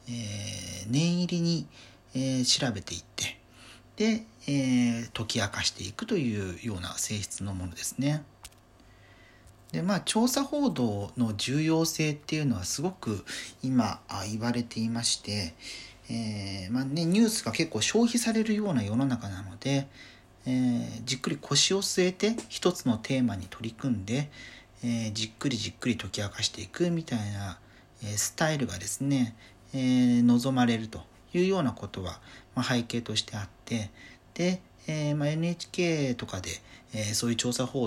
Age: 40-59